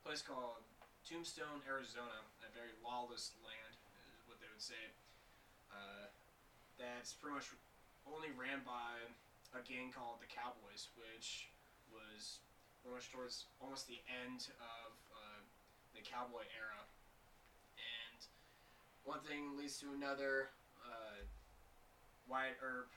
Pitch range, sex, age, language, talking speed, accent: 115-130 Hz, male, 20-39, English, 125 wpm, American